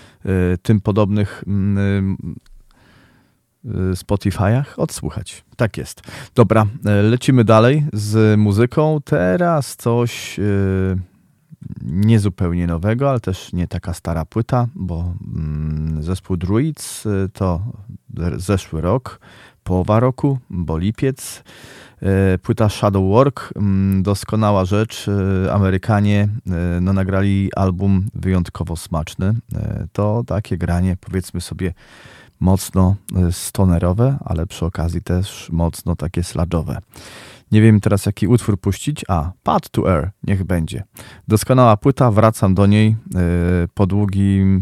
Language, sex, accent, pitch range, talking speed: Polish, male, native, 90-110 Hz, 100 wpm